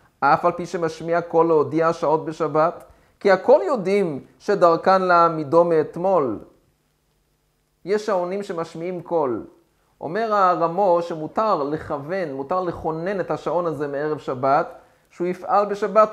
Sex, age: male, 30-49